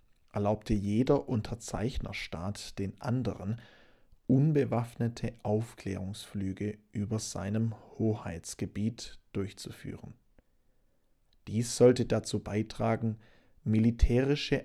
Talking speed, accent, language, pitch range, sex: 65 wpm, German, English, 105-120 Hz, male